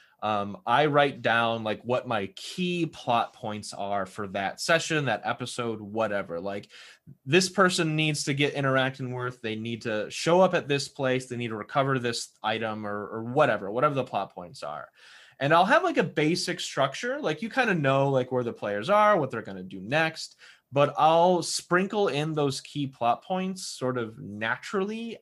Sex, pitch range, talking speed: male, 110-150 Hz, 195 wpm